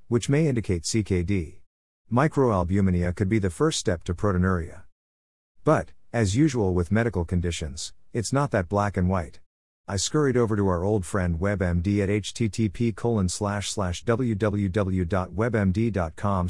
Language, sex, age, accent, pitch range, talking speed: English, male, 50-69, American, 90-115 Hz, 140 wpm